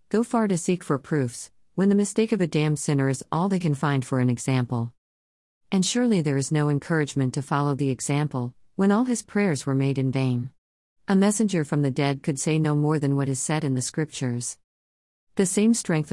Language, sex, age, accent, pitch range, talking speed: English, female, 50-69, American, 130-170 Hz, 215 wpm